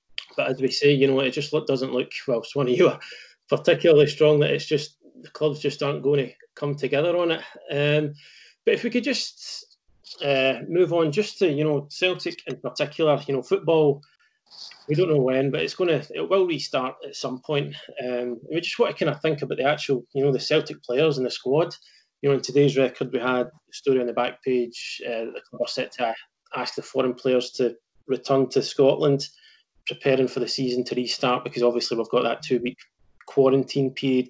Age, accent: 20-39, British